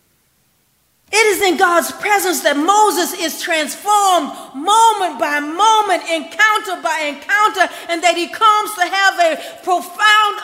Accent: American